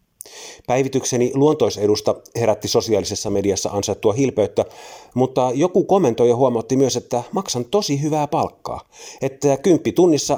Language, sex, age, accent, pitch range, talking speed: Finnish, male, 30-49, native, 105-145 Hz, 115 wpm